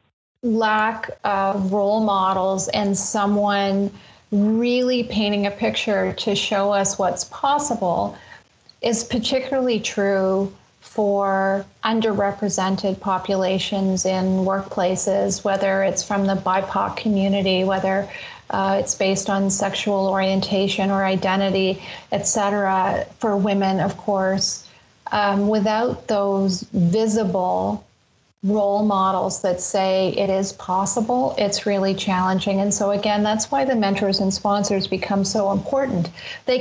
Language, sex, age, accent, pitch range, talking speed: English, female, 30-49, American, 195-215 Hz, 115 wpm